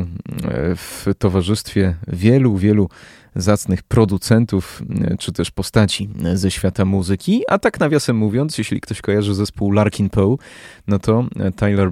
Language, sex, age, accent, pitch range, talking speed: Polish, male, 20-39, native, 95-115 Hz, 125 wpm